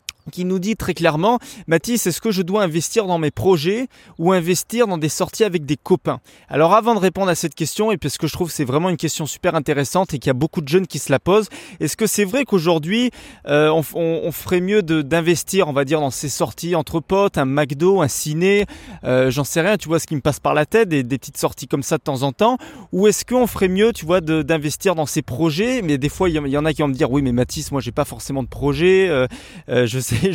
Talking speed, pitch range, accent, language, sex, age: 280 wpm, 145-185 Hz, French, French, male, 20-39